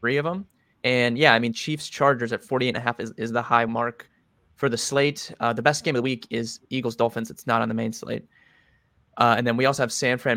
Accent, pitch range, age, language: American, 115-130 Hz, 20-39, English